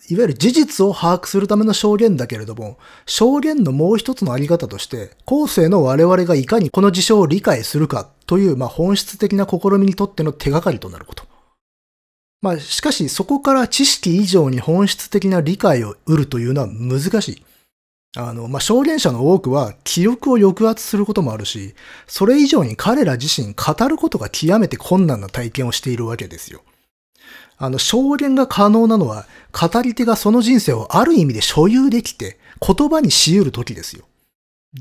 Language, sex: Japanese, male